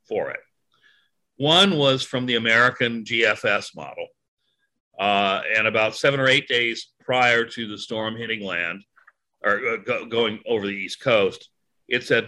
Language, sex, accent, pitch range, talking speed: English, male, American, 115-140 Hz, 155 wpm